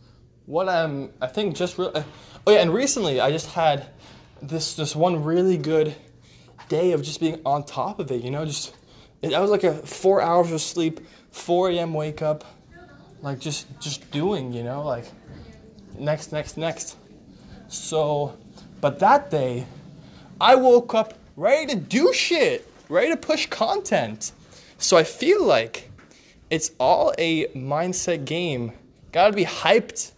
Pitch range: 145-195 Hz